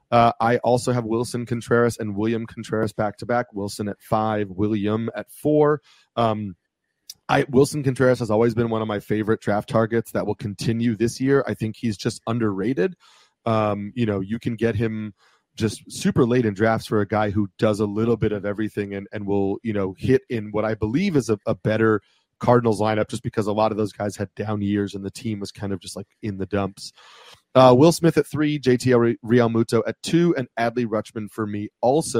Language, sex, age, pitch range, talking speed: English, male, 30-49, 105-120 Hz, 215 wpm